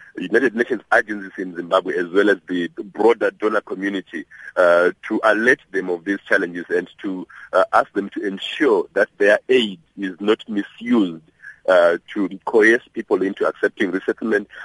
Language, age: English, 50-69